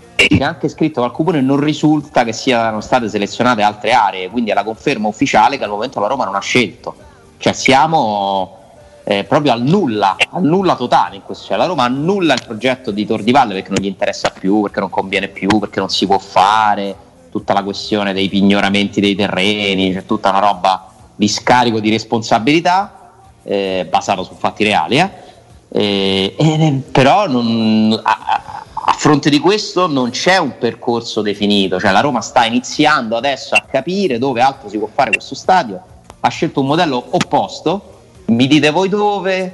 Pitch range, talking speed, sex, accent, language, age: 105-165 Hz, 180 wpm, male, native, Italian, 30-49